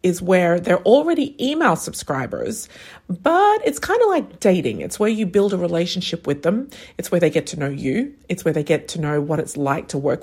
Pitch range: 155-210 Hz